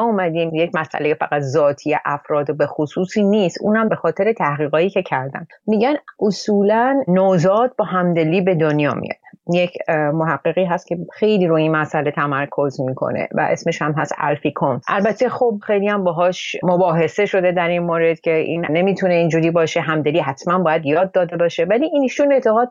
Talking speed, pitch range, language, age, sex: 170 wpm, 170-215 Hz, Persian, 30-49, female